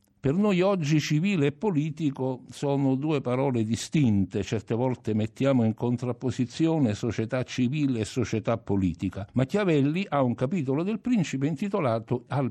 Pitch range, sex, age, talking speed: 110-165 Hz, male, 60-79, 135 wpm